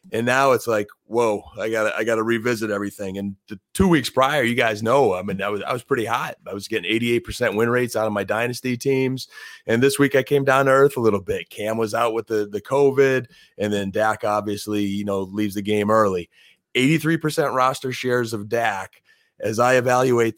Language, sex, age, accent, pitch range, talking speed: English, male, 30-49, American, 105-125 Hz, 220 wpm